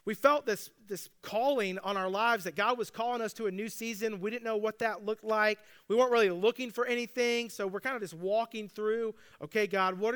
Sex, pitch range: male, 190-230 Hz